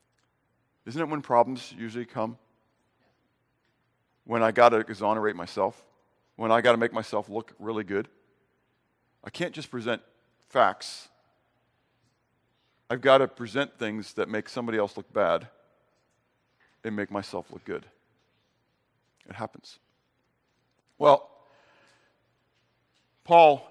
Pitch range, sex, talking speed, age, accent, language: 115-150 Hz, male, 115 wpm, 50-69, American, English